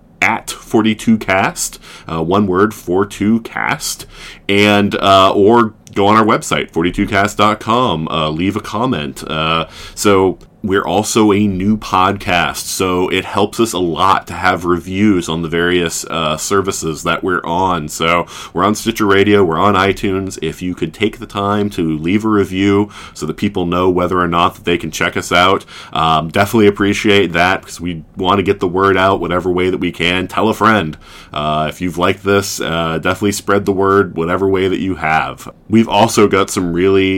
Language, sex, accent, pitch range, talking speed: English, male, American, 85-100 Hz, 185 wpm